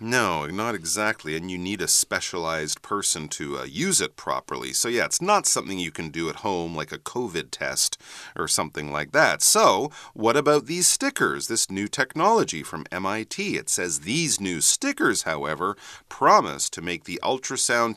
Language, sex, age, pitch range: Chinese, male, 40-59, 90-130 Hz